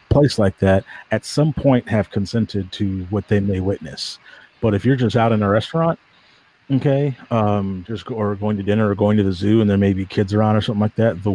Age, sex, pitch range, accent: 40-59, male, 100-115 Hz, American